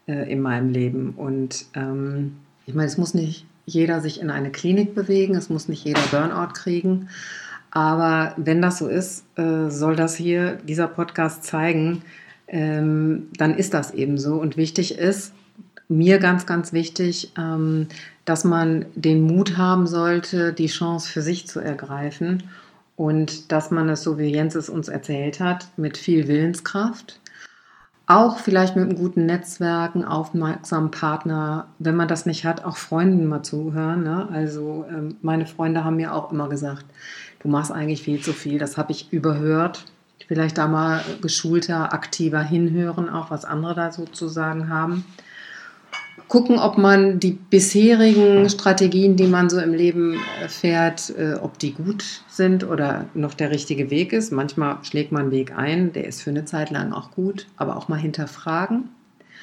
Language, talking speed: German, 165 wpm